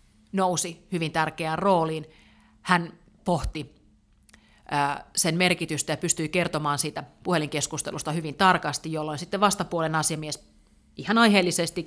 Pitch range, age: 150-180 Hz, 30-49